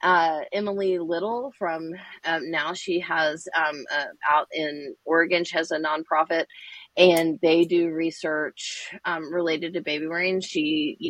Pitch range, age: 155-190 Hz, 30-49